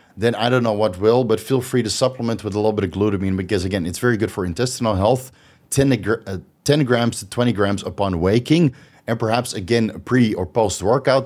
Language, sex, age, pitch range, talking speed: English, male, 30-49, 105-130 Hz, 210 wpm